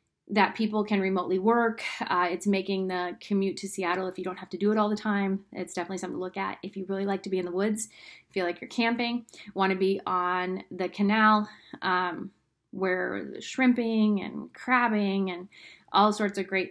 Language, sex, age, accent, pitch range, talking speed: English, female, 30-49, American, 190-225 Hz, 200 wpm